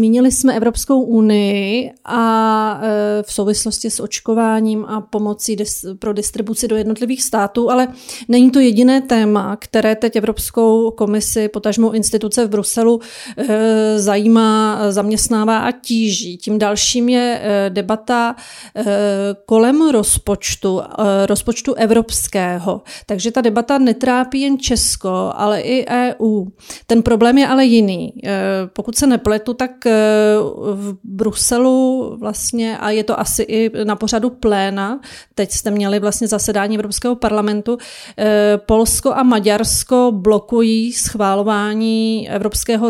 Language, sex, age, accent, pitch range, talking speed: English, female, 30-49, Czech, 210-230 Hz, 120 wpm